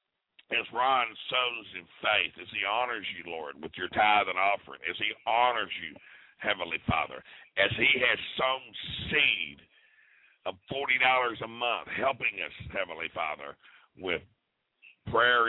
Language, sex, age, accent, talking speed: English, male, 50-69, American, 140 wpm